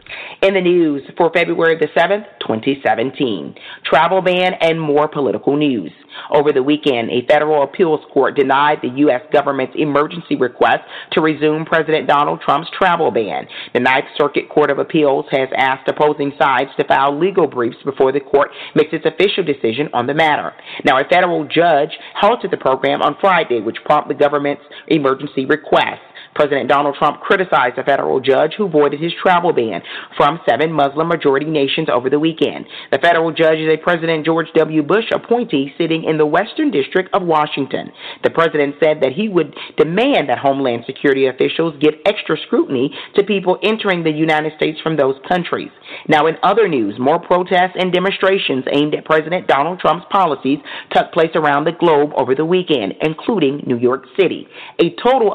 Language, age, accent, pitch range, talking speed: English, 40-59, American, 145-170 Hz, 175 wpm